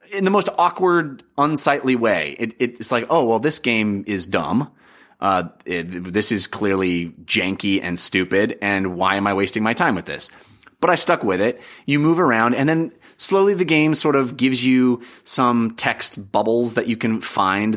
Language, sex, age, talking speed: English, male, 30-49, 190 wpm